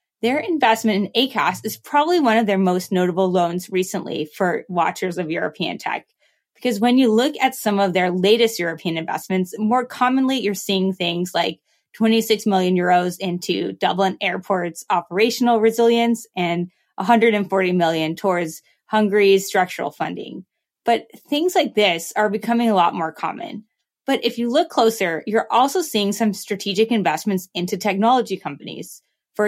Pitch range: 180-230 Hz